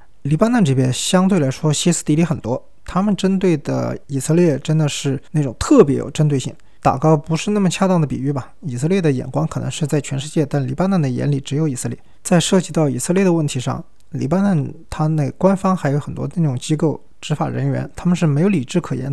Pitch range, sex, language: 135-175 Hz, male, Chinese